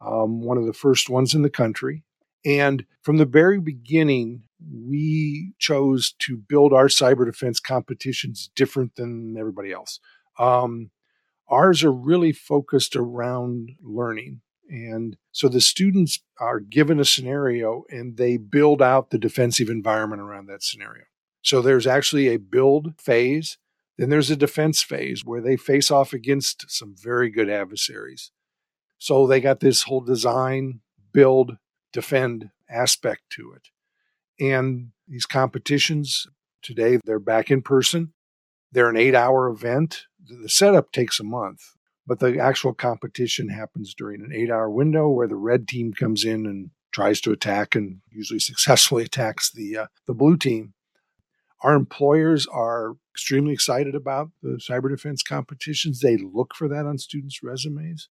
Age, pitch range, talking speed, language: 50-69, 115-145 Hz, 150 wpm, English